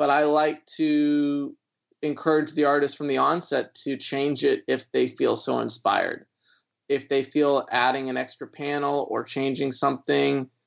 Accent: American